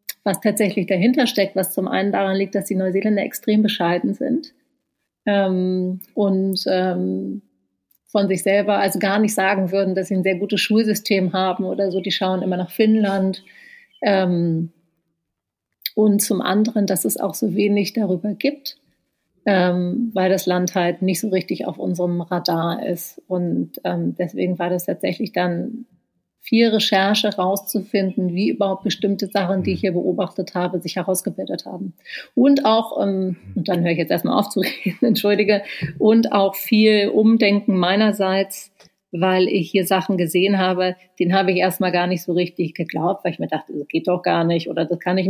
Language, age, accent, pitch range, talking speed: German, 30-49, German, 180-205 Hz, 175 wpm